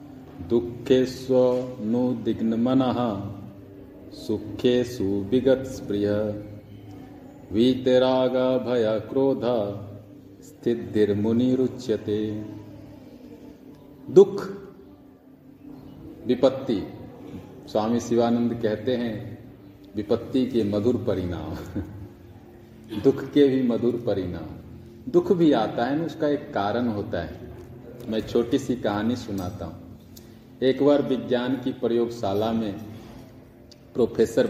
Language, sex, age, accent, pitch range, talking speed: Hindi, male, 40-59, native, 110-130 Hz, 85 wpm